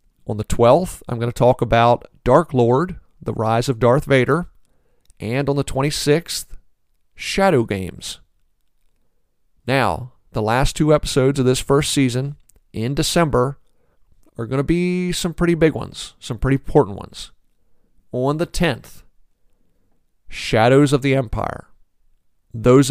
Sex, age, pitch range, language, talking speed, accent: male, 40-59, 115-145 Hz, English, 135 wpm, American